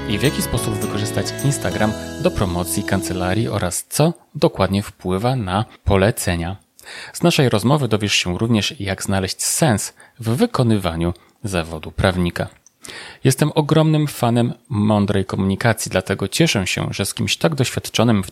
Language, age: Polish, 30-49